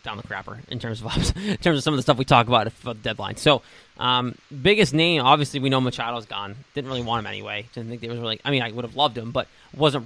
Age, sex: 20-39, male